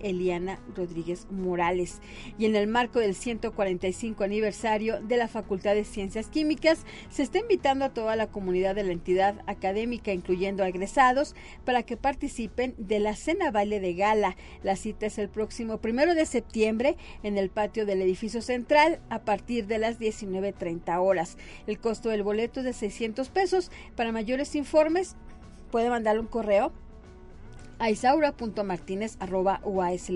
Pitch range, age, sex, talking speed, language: 200-250 Hz, 40-59, female, 150 wpm, Spanish